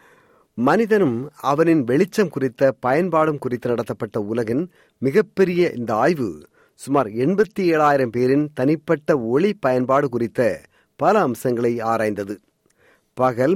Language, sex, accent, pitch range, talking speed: Tamil, male, native, 120-155 Hz, 95 wpm